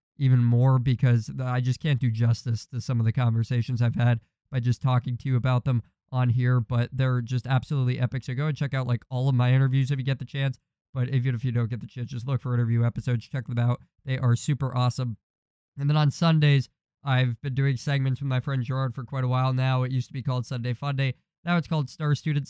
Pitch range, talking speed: 125-140 Hz, 250 wpm